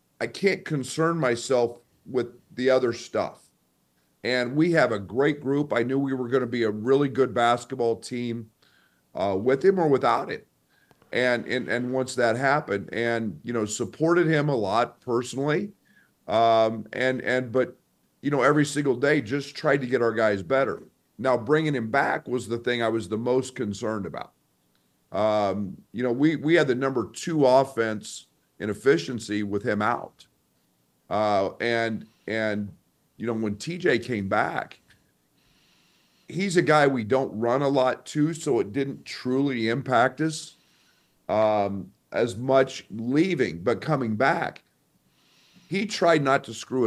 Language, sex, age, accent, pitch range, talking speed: English, male, 50-69, American, 115-145 Hz, 160 wpm